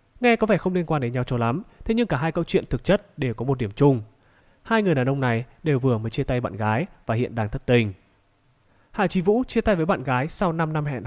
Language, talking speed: Vietnamese, 280 wpm